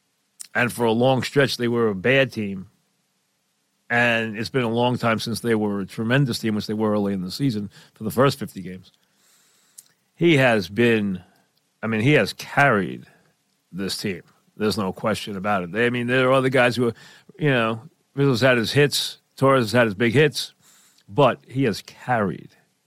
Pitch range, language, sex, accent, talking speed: 110-130 Hz, English, male, American, 190 wpm